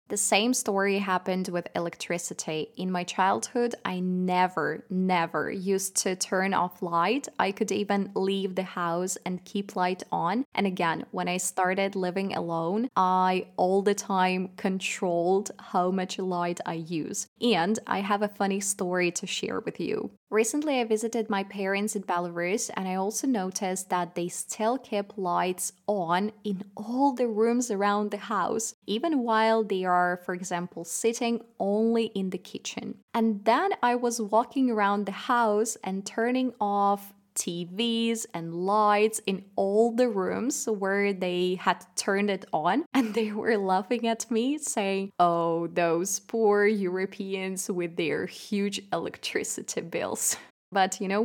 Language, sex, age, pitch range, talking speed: Russian, female, 20-39, 185-220 Hz, 155 wpm